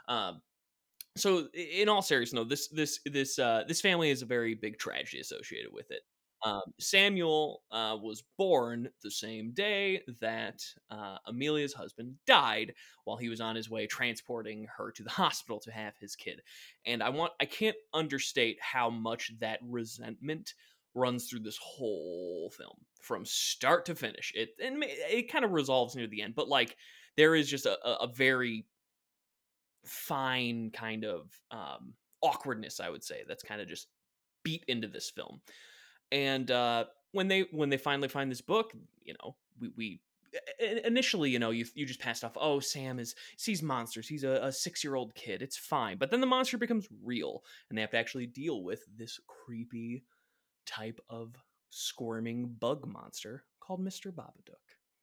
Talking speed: 170 wpm